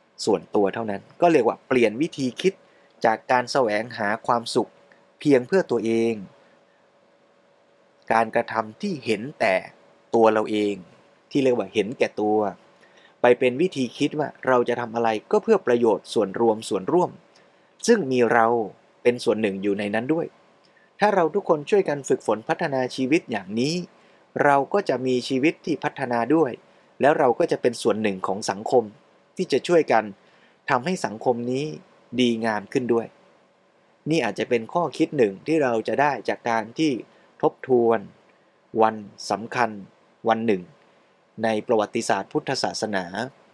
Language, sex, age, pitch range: Thai, male, 20-39, 110-135 Hz